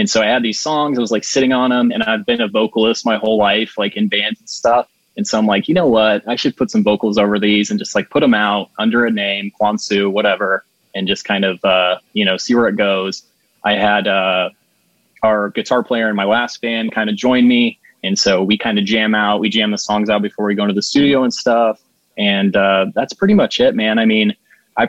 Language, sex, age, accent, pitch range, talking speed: English, male, 20-39, American, 105-125 Hz, 255 wpm